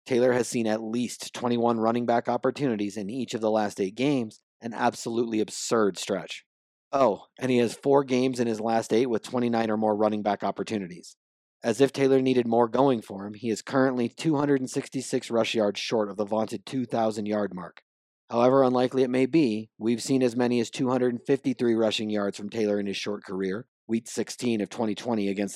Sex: male